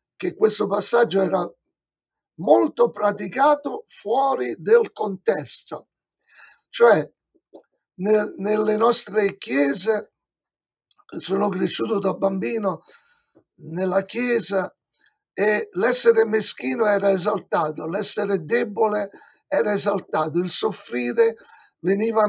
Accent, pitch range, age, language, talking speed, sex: native, 190-235 Hz, 50-69, Italian, 85 wpm, male